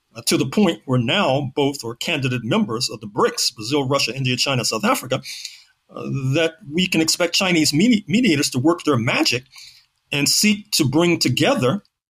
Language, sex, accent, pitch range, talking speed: English, male, American, 125-165 Hz, 175 wpm